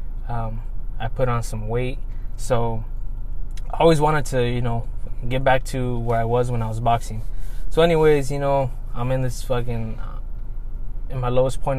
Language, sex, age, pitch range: English, male, 20-39, 115-130 Hz